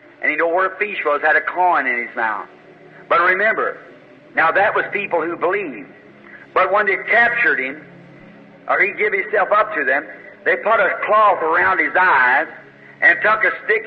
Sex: male